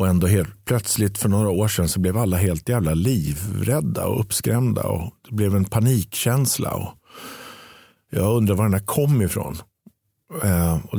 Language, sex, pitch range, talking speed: Swedish, male, 90-120 Hz, 160 wpm